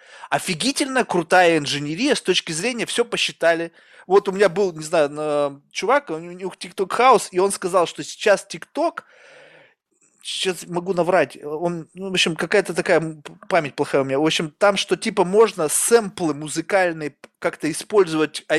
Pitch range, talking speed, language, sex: 170-220 Hz, 155 wpm, Russian, male